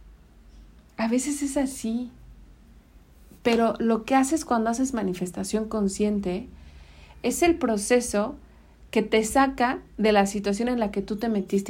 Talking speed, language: 140 wpm, Spanish